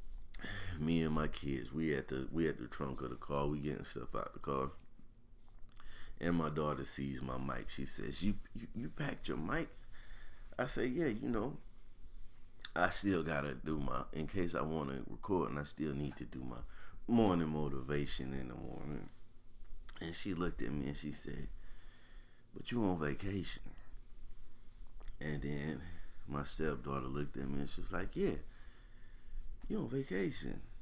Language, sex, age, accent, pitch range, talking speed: English, male, 30-49, American, 70-105 Hz, 175 wpm